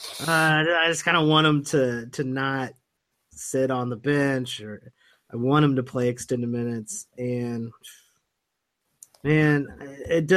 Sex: male